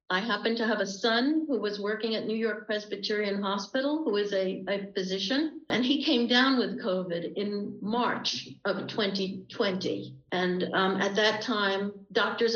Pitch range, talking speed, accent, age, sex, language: 190-230 Hz, 165 wpm, American, 60-79, female, English